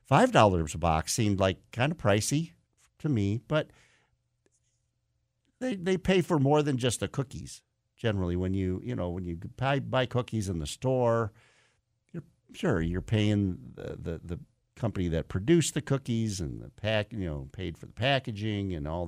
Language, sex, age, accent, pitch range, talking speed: English, male, 50-69, American, 90-120 Hz, 175 wpm